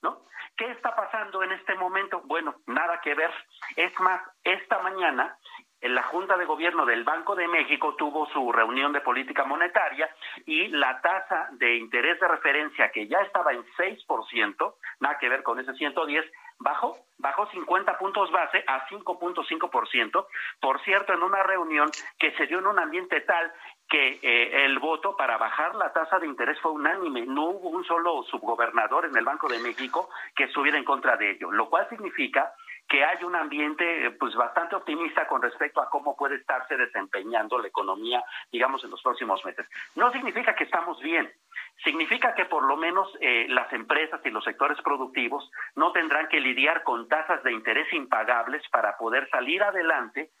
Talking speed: 175 wpm